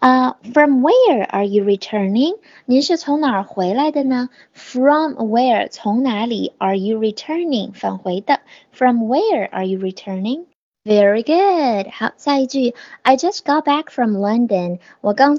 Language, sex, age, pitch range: Chinese, female, 20-39, 215-285 Hz